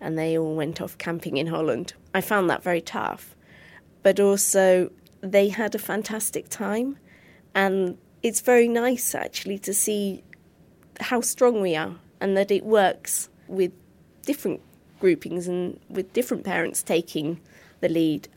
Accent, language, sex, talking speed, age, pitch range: British, English, female, 145 wpm, 30-49, 185-230 Hz